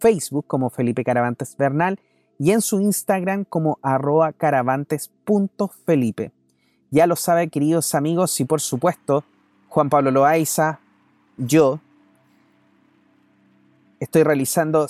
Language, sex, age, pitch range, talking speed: Spanish, male, 30-49, 125-160 Hz, 105 wpm